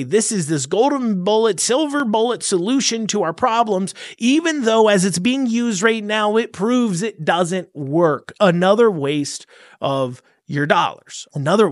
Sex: male